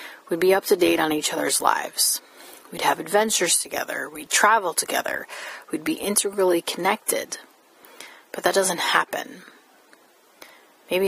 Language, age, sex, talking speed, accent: English, 30-49, female, 135 wpm, American